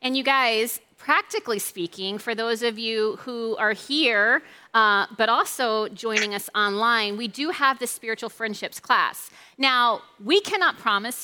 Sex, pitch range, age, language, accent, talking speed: female, 210-255 Hz, 40-59, English, American, 155 wpm